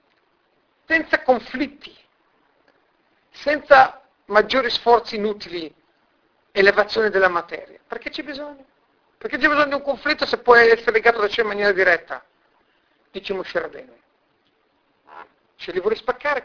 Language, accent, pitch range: Italian, native, 190-255 Hz